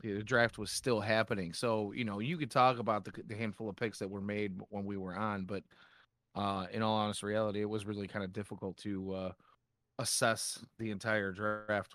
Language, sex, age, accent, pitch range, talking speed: English, male, 30-49, American, 100-120 Hz, 210 wpm